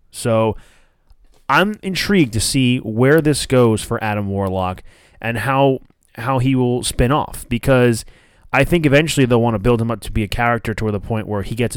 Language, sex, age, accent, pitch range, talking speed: English, male, 20-39, American, 105-145 Hz, 195 wpm